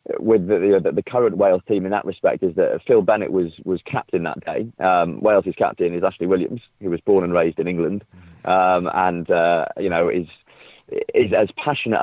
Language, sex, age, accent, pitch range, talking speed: English, male, 30-49, British, 85-125 Hz, 205 wpm